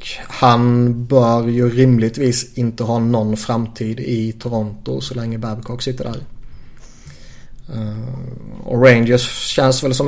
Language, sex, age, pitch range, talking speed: Swedish, male, 30-49, 120-130 Hz, 120 wpm